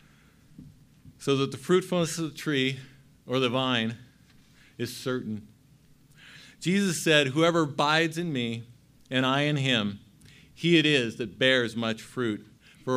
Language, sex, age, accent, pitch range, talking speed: English, male, 50-69, American, 115-145 Hz, 140 wpm